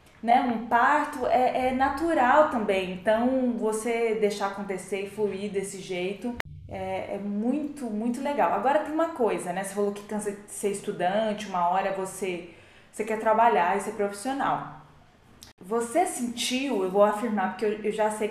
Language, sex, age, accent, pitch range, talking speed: Portuguese, female, 20-39, Brazilian, 200-240 Hz, 165 wpm